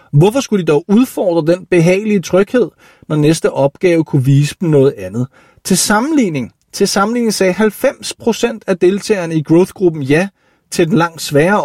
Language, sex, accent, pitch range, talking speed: Danish, male, native, 140-195 Hz, 160 wpm